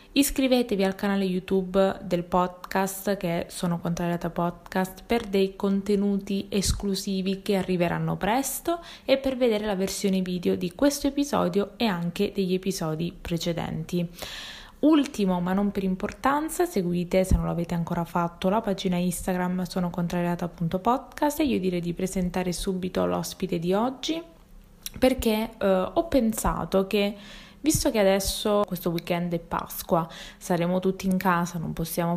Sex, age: female, 20-39